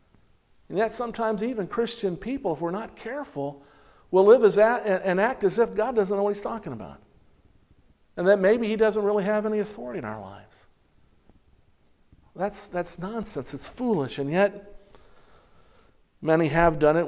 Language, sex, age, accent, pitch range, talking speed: English, male, 50-69, American, 135-185 Hz, 170 wpm